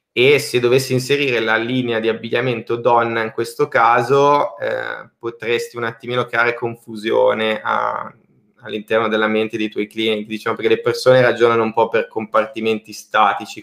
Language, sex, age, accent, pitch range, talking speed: Italian, male, 20-39, native, 110-120 Hz, 155 wpm